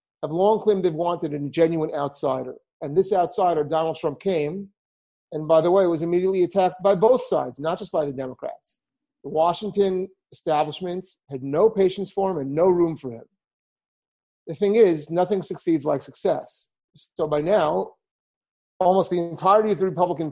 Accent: American